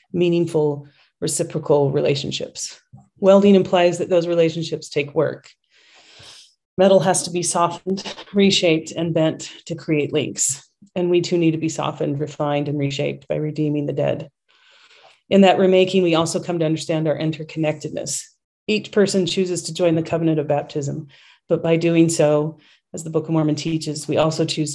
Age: 30-49